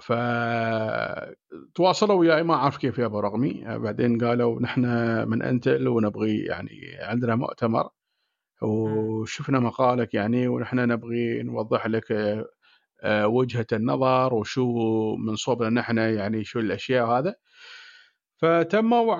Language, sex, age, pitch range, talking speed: Arabic, male, 40-59, 120-170 Hz, 110 wpm